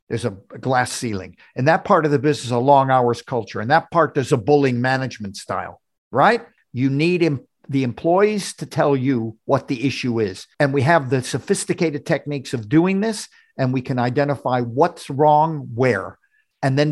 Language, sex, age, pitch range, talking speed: English, male, 50-69, 120-160 Hz, 190 wpm